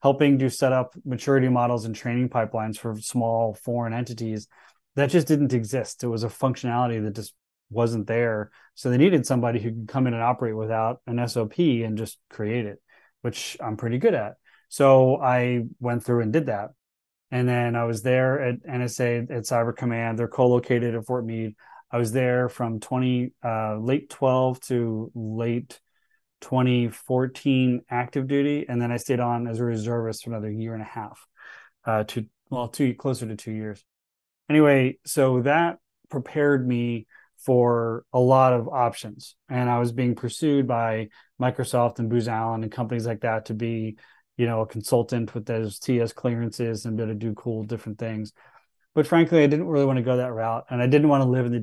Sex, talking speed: male, 190 wpm